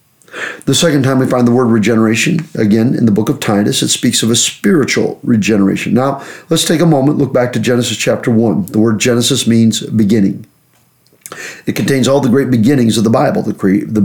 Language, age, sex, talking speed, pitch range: English, 40-59, male, 200 wpm, 115-145 Hz